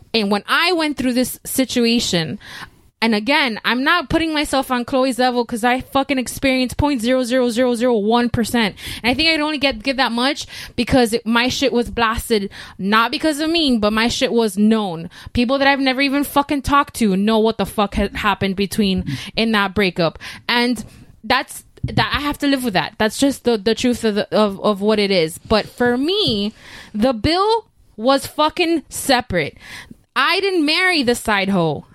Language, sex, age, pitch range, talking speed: English, female, 20-39, 220-290 Hz, 185 wpm